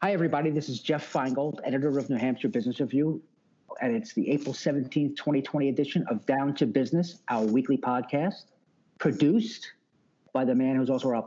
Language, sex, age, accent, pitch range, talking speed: English, male, 50-69, American, 130-175 Hz, 175 wpm